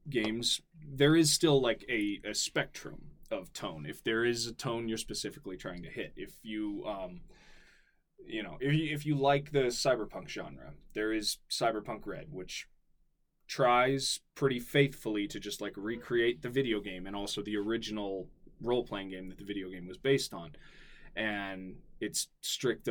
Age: 20-39